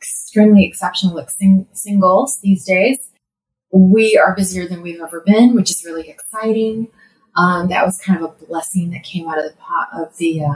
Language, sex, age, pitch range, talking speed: English, female, 30-49, 160-200 Hz, 180 wpm